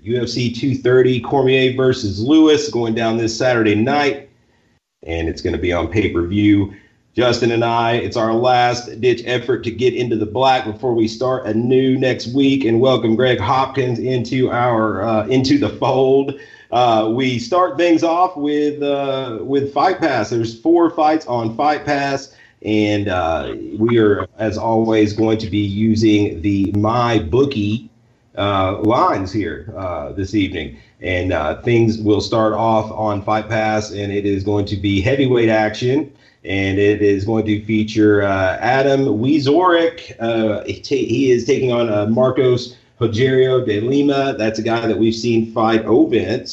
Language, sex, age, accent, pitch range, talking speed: English, male, 40-59, American, 105-130 Hz, 165 wpm